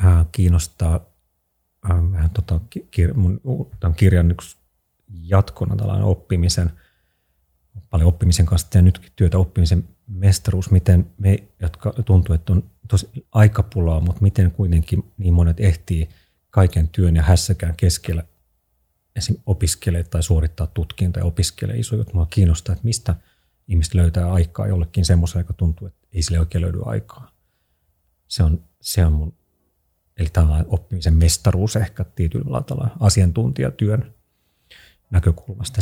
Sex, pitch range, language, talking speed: male, 85-105 Hz, Finnish, 125 wpm